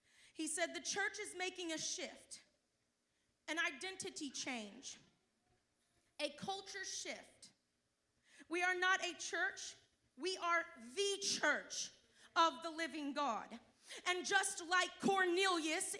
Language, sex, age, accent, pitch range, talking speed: English, female, 30-49, American, 265-360 Hz, 115 wpm